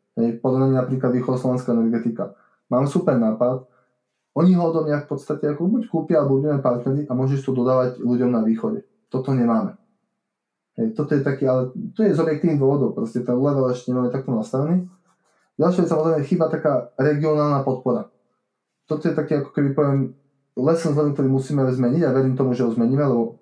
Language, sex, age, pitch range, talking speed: Slovak, male, 20-39, 120-145 Hz, 185 wpm